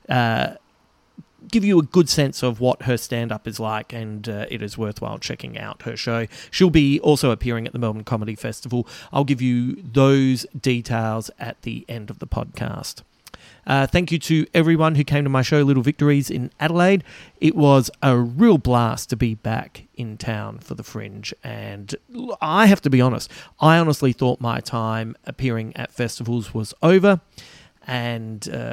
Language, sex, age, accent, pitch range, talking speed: English, male, 30-49, Australian, 115-145 Hz, 180 wpm